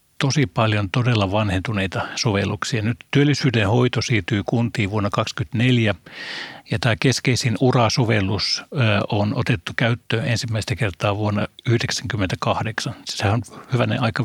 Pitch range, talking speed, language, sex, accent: 105-125 Hz, 115 wpm, Finnish, male, native